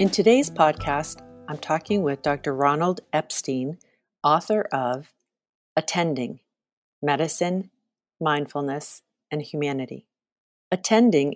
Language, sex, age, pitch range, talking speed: English, female, 40-59, 140-175 Hz, 90 wpm